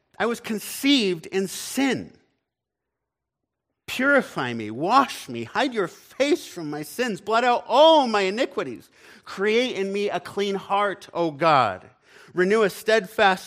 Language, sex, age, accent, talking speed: English, male, 50-69, American, 140 wpm